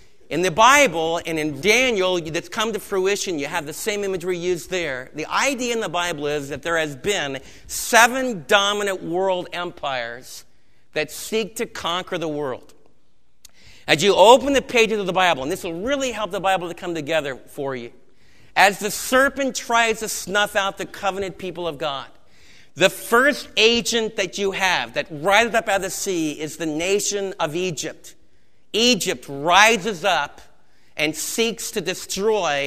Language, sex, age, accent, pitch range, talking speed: English, male, 40-59, American, 160-210 Hz, 175 wpm